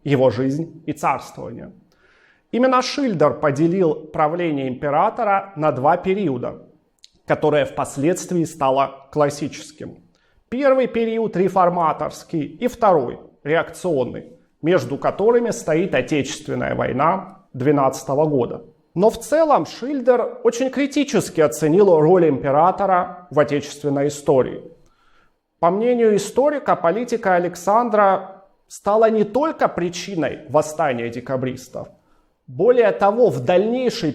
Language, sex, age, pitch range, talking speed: Russian, male, 30-49, 150-210 Hz, 100 wpm